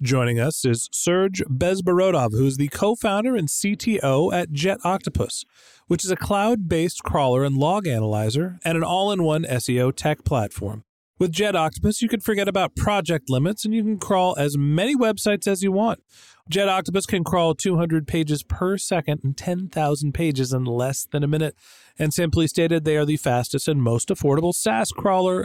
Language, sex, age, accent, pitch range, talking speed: English, male, 40-59, American, 140-190 Hz, 185 wpm